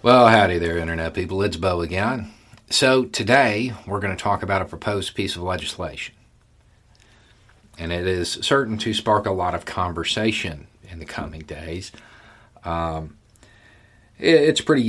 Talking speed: 150 wpm